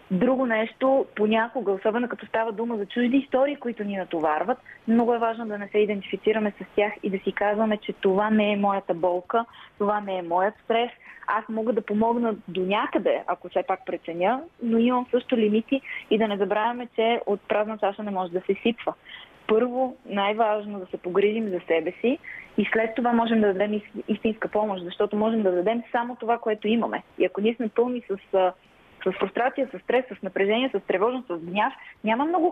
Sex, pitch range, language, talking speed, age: female, 195-235 Hz, Bulgarian, 195 wpm, 20-39